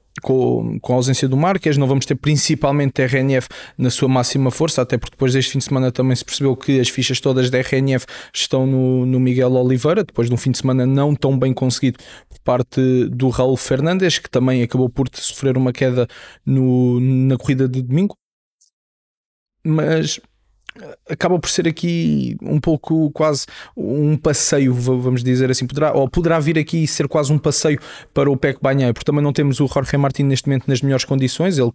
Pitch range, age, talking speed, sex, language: 130-150 Hz, 20-39, 195 wpm, male, Portuguese